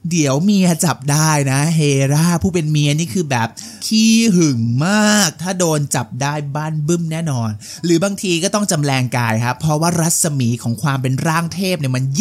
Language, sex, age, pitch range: Thai, male, 20-39, 135-185 Hz